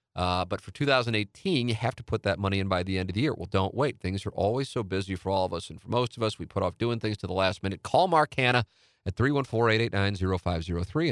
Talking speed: 260 wpm